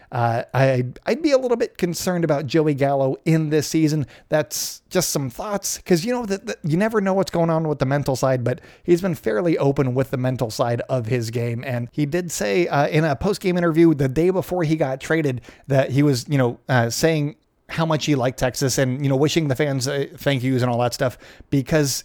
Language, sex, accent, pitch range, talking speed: English, male, American, 130-165 Hz, 230 wpm